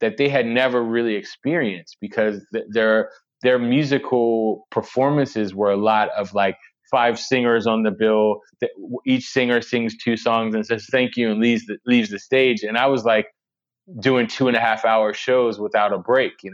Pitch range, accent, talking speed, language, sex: 105-130 Hz, American, 180 wpm, English, male